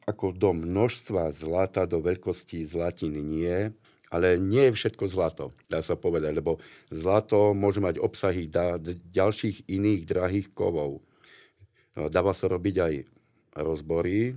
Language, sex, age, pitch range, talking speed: Slovak, male, 50-69, 85-105 Hz, 140 wpm